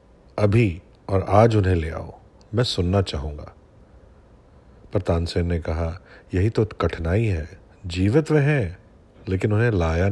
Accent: native